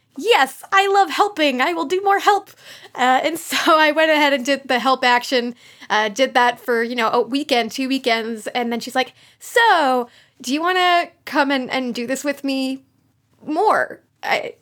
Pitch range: 240-300 Hz